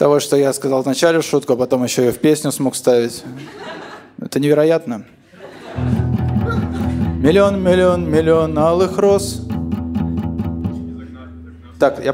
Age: 20-39